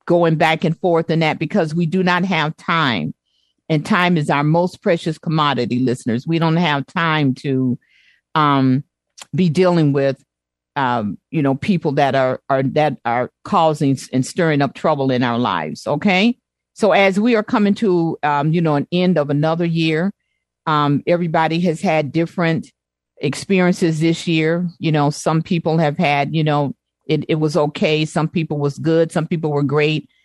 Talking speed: 175 wpm